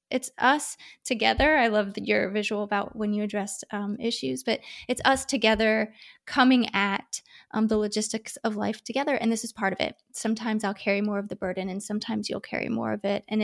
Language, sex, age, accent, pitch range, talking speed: English, female, 20-39, American, 210-255 Hz, 205 wpm